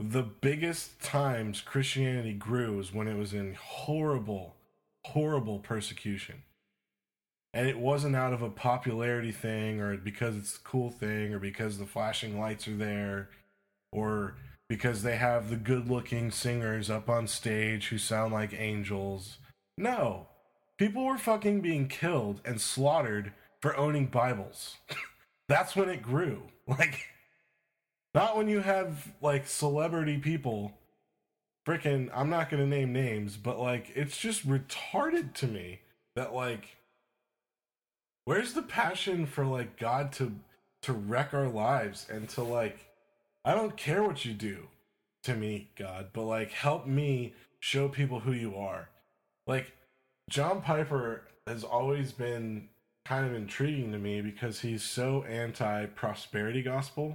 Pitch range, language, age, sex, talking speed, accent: 110-140 Hz, English, 20-39, male, 140 wpm, American